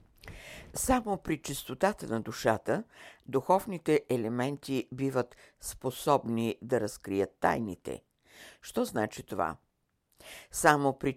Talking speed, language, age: 90 wpm, Bulgarian, 60-79